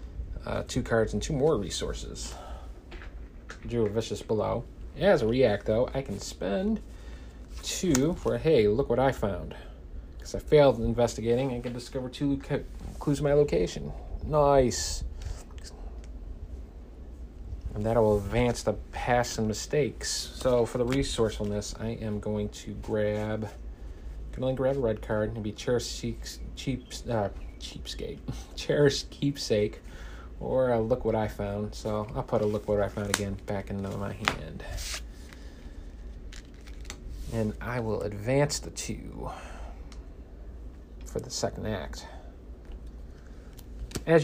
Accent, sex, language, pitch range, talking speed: American, male, English, 75-120 Hz, 135 wpm